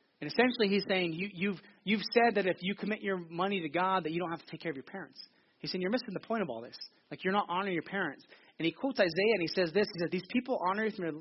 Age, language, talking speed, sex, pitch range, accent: 30-49, English, 295 wpm, male, 160-195 Hz, American